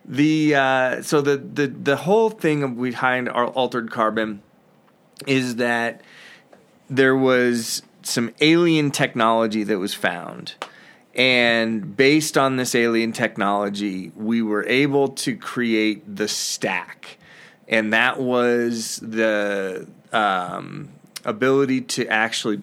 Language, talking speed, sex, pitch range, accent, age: English, 115 wpm, male, 110-135 Hz, American, 30-49